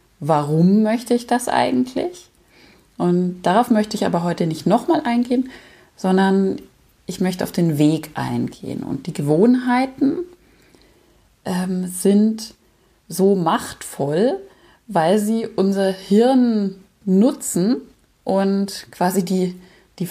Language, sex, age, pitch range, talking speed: German, female, 30-49, 180-235 Hz, 110 wpm